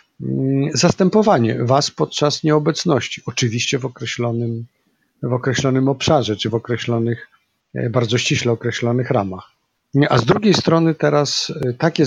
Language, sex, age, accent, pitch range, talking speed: Polish, male, 50-69, native, 120-145 Hz, 110 wpm